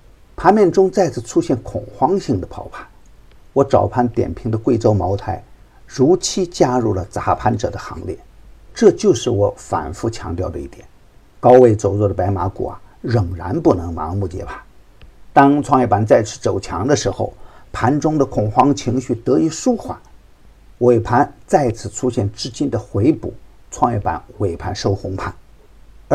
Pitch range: 100-130 Hz